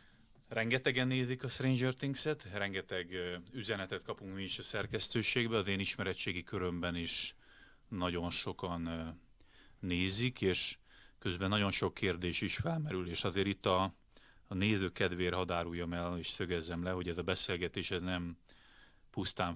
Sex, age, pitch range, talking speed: male, 30-49, 85-100 Hz, 140 wpm